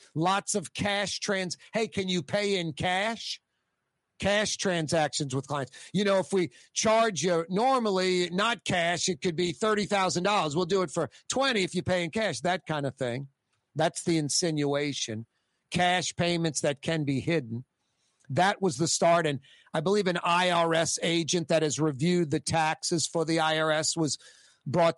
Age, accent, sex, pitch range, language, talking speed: 50-69, American, male, 145-180 Hz, English, 170 wpm